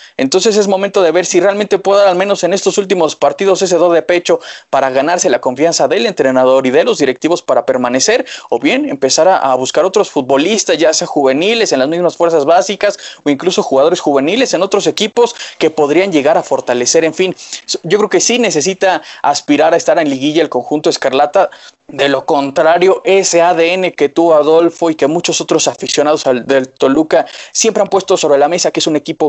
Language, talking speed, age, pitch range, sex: Spanish, 205 wpm, 20-39, 150-190 Hz, male